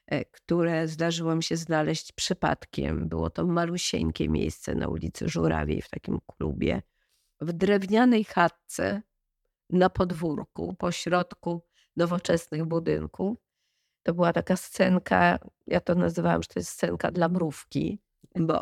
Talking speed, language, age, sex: 120 wpm, Polish, 40-59, female